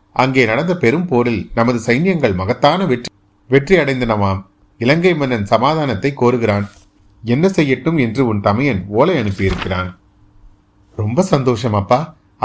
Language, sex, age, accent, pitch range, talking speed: Tamil, male, 30-49, native, 100-150 Hz, 105 wpm